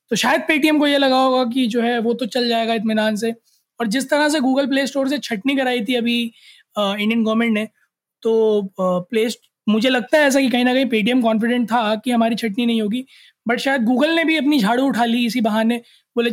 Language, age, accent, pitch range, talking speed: Hindi, 20-39, native, 210-250 Hz, 225 wpm